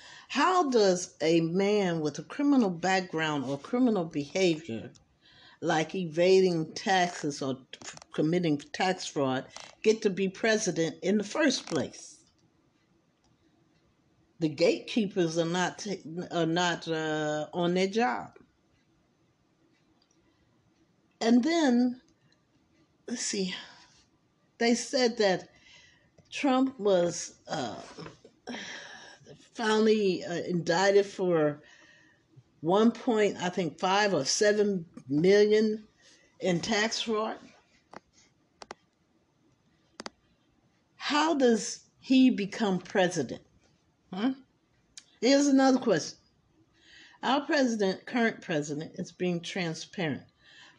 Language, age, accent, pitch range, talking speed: English, 50-69, American, 170-230 Hz, 90 wpm